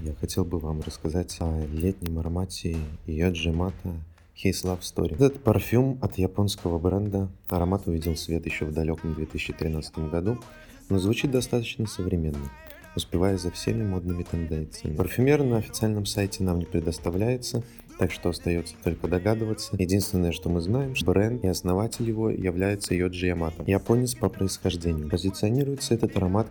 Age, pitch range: 20-39, 85-110 Hz